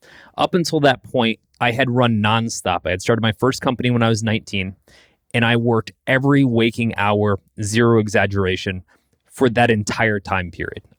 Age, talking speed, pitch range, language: 20-39, 170 wpm, 100-135 Hz, English